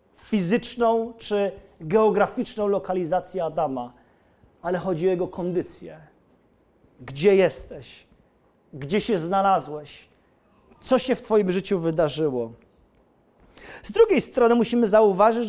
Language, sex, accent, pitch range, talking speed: Polish, male, native, 190-250 Hz, 100 wpm